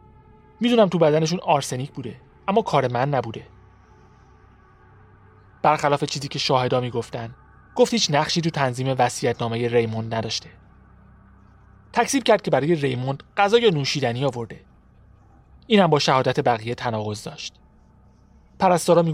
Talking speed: 120 wpm